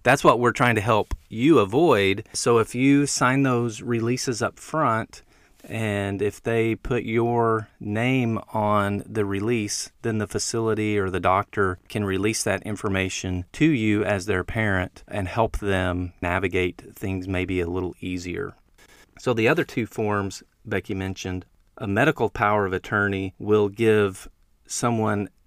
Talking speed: 150 wpm